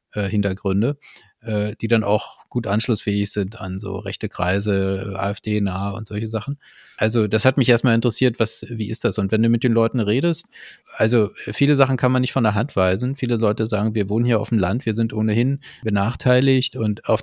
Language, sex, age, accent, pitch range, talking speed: German, male, 30-49, German, 105-120 Hz, 200 wpm